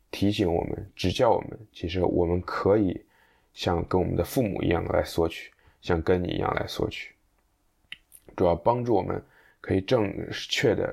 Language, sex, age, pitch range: Chinese, male, 20-39, 85-105 Hz